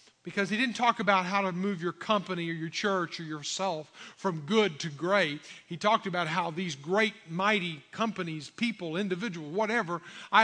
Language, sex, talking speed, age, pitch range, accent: English, male, 180 wpm, 50-69, 180-235 Hz, American